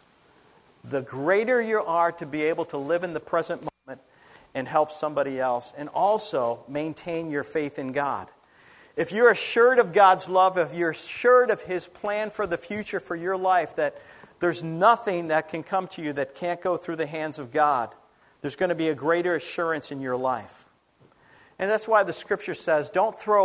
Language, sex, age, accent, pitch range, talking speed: English, male, 50-69, American, 150-205 Hz, 195 wpm